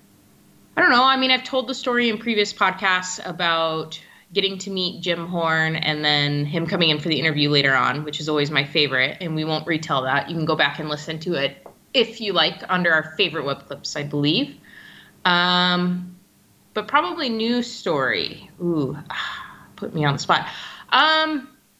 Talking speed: 185 wpm